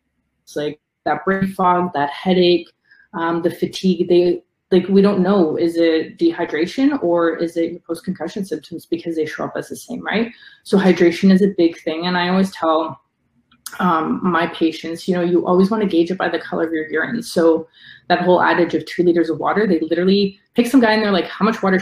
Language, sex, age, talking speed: English, female, 20-39, 210 wpm